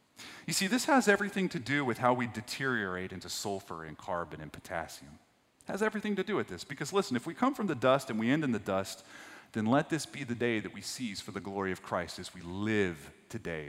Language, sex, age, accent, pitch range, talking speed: English, male, 30-49, American, 115-175 Hz, 240 wpm